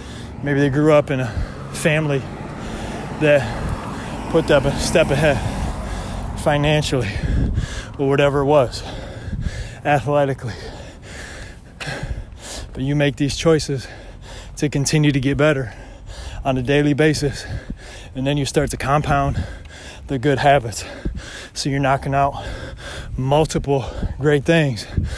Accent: American